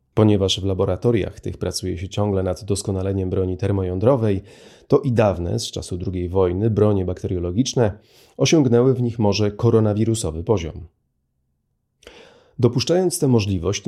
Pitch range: 95-120 Hz